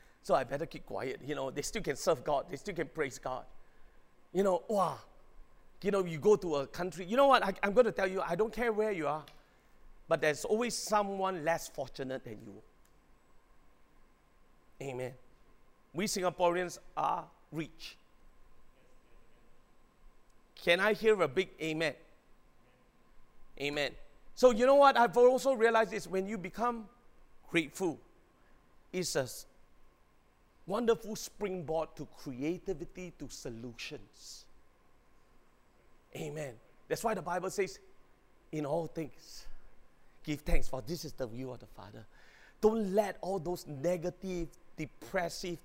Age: 40-59